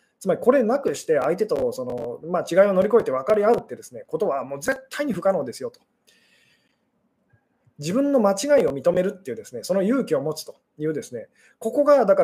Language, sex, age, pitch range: Japanese, male, 20-39, 175-295 Hz